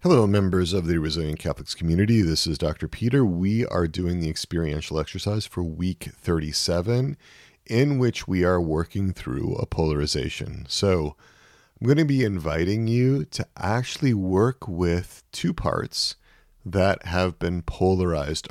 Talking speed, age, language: 145 wpm, 40-59, English